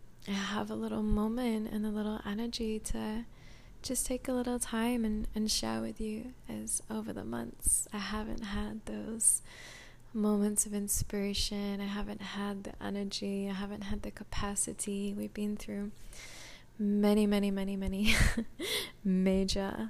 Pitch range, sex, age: 195-215 Hz, female, 20-39